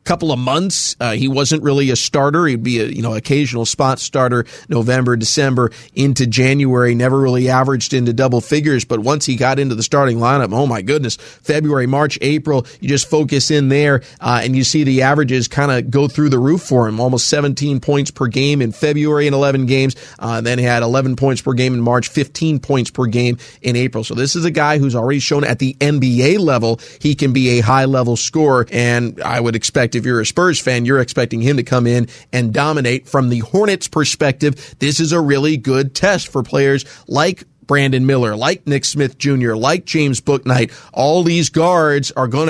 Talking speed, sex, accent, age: 210 wpm, male, American, 30-49